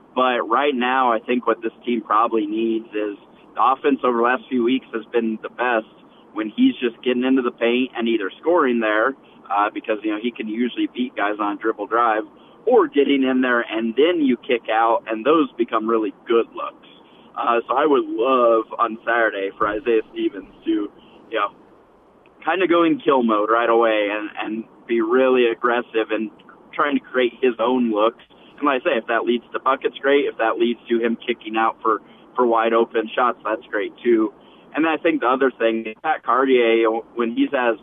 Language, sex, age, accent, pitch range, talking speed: English, male, 30-49, American, 115-130 Hz, 210 wpm